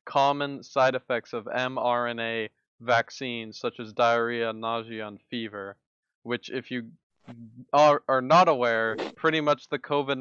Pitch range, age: 115-130 Hz, 20-39